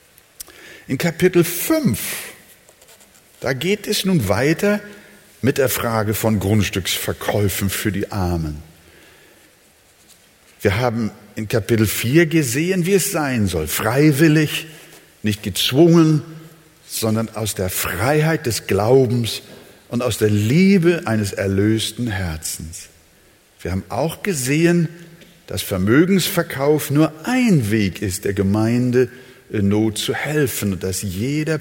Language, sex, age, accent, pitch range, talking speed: German, male, 60-79, German, 95-145 Hz, 115 wpm